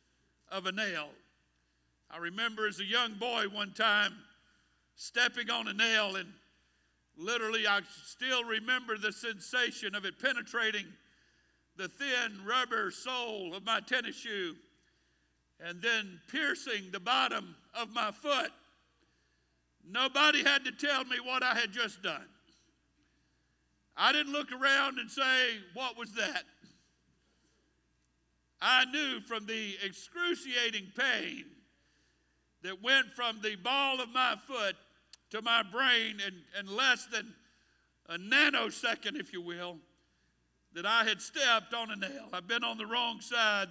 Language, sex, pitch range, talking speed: English, male, 175-245 Hz, 135 wpm